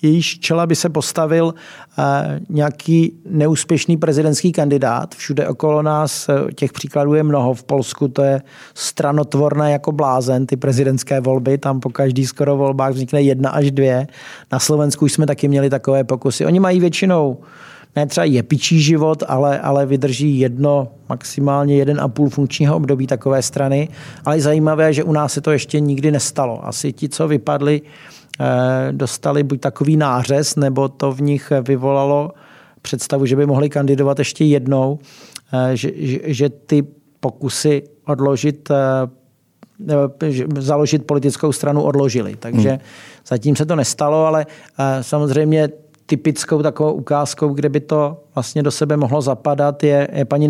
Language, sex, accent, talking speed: Czech, male, native, 145 wpm